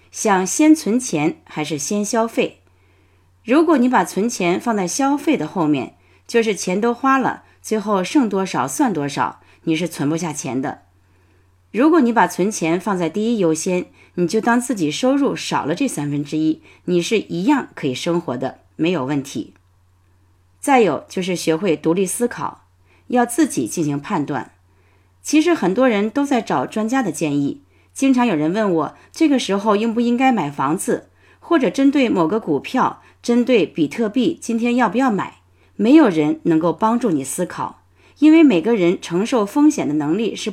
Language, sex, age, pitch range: Chinese, female, 30-49, 150-250 Hz